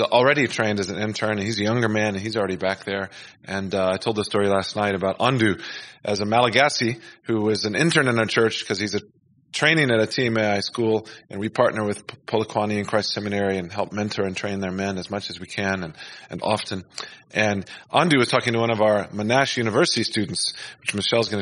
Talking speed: 225 wpm